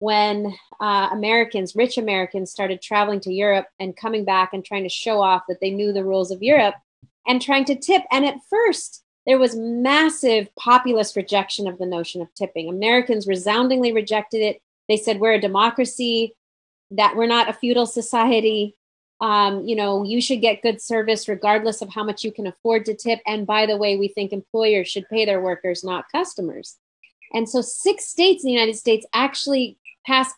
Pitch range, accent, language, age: 200-250 Hz, American, English, 30-49